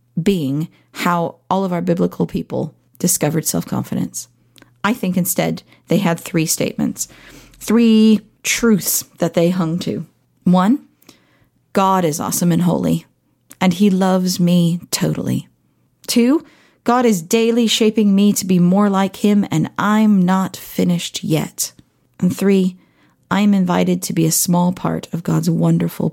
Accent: American